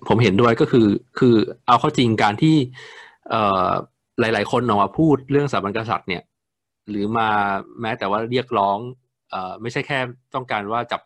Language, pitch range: Thai, 100-130 Hz